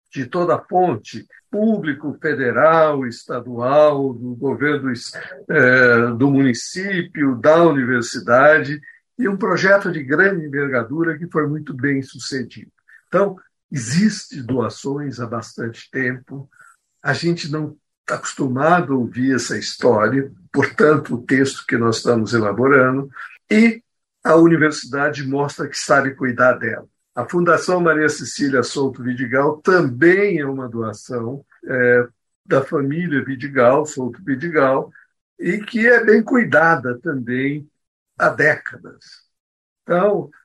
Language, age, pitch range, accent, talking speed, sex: Portuguese, 60-79, 125-160 Hz, Brazilian, 120 wpm, male